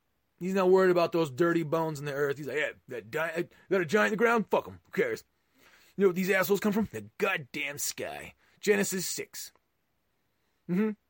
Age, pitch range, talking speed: 30-49, 140-185 Hz, 205 wpm